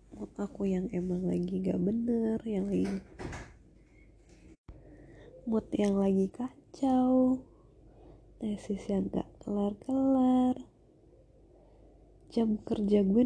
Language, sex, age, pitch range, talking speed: Indonesian, female, 20-39, 185-215 Hz, 85 wpm